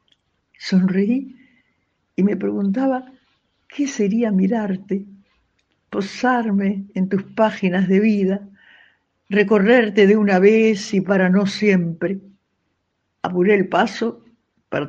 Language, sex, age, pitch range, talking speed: Spanish, female, 60-79, 160-210 Hz, 100 wpm